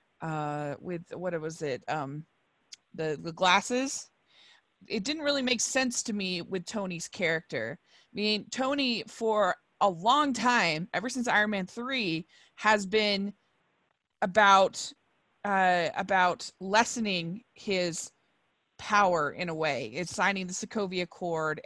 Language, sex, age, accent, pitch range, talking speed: English, female, 30-49, American, 180-230 Hz, 130 wpm